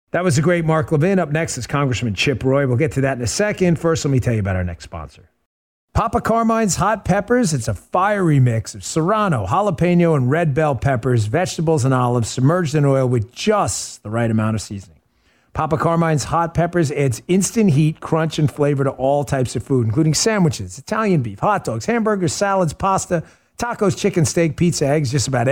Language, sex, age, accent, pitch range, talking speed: English, male, 40-59, American, 115-165 Hz, 205 wpm